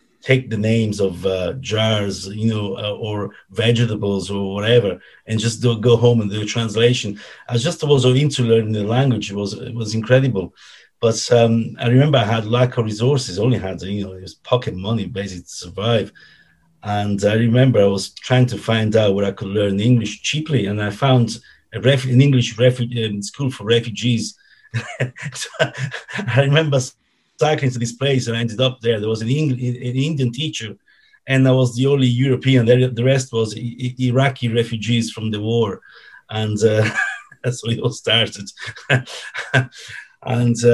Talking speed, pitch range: 175 wpm, 105-125 Hz